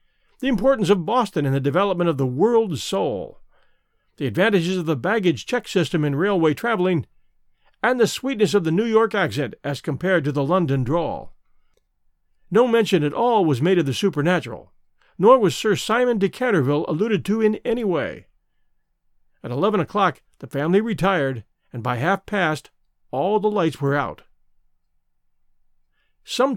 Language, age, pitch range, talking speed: English, 50-69, 140-210 Hz, 155 wpm